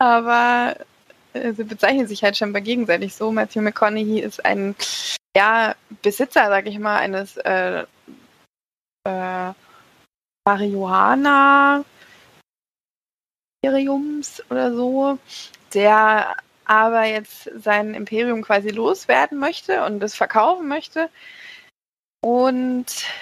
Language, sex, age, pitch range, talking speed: German, female, 20-39, 210-250 Hz, 95 wpm